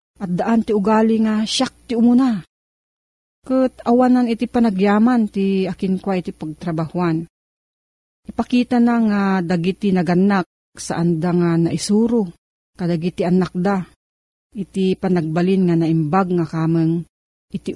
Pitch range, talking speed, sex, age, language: 170-225 Hz, 120 wpm, female, 40-59, Filipino